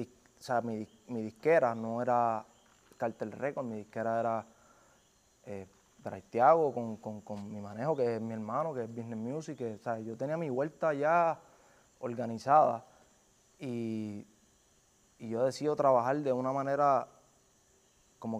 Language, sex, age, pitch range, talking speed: Spanish, male, 20-39, 115-140 Hz, 145 wpm